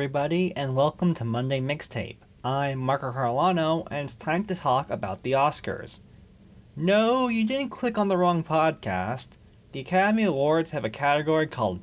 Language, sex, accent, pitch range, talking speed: English, male, American, 105-155 Hz, 160 wpm